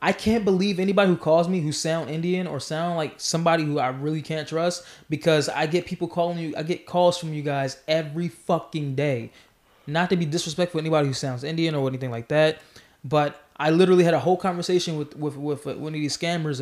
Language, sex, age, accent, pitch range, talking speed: English, male, 20-39, American, 150-185 Hz, 225 wpm